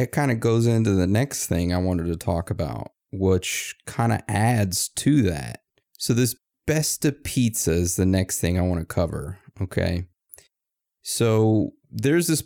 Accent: American